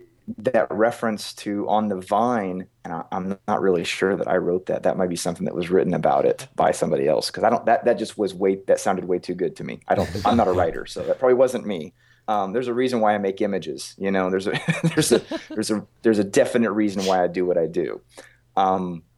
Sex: male